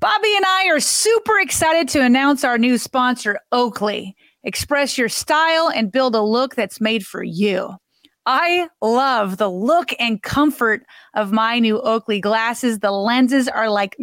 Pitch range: 220-310 Hz